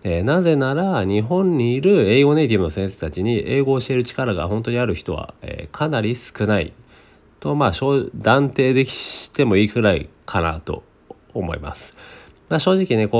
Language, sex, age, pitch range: Japanese, male, 40-59, 95-135 Hz